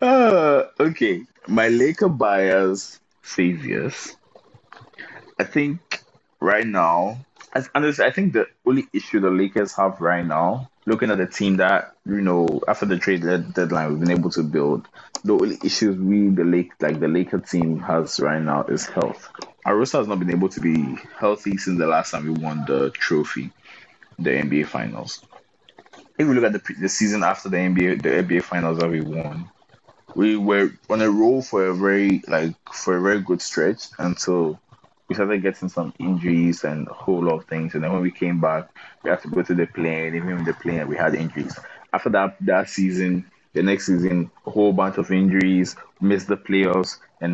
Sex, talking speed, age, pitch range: male, 195 wpm, 20-39, 85-100 Hz